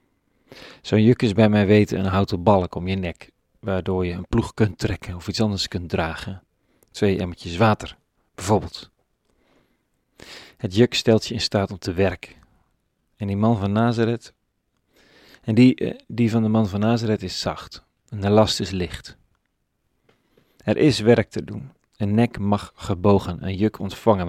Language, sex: Dutch, male